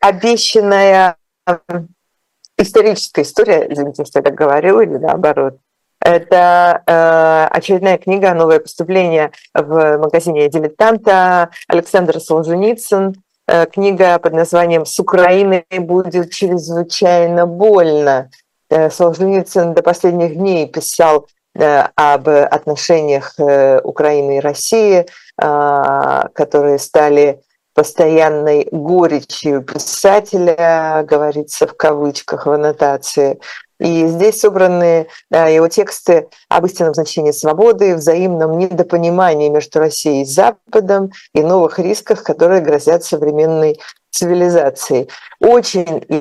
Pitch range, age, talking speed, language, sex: 150-185 Hz, 50-69, 90 wpm, Russian, female